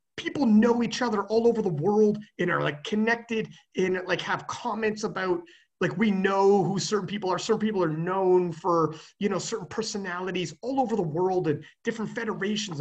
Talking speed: 185 wpm